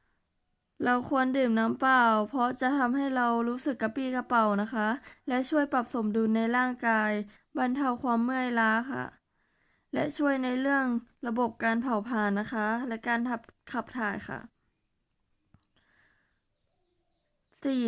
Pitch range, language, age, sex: 230-255 Hz, Thai, 20-39, female